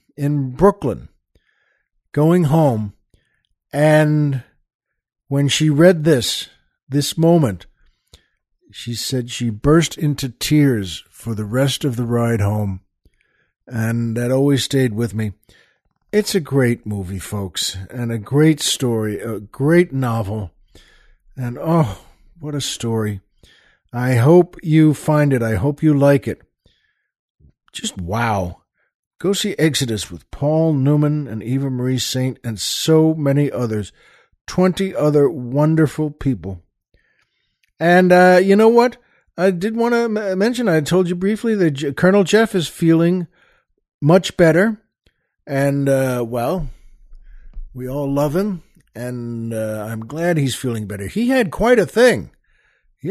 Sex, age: male, 60-79